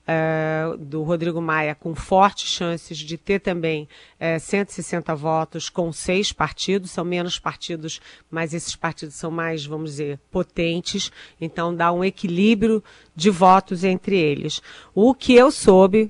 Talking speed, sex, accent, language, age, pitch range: 140 wpm, female, Brazilian, Portuguese, 40-59, 165-205 Hz